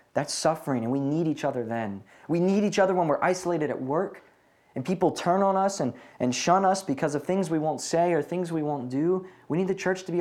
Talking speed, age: 255 wpm, 20-39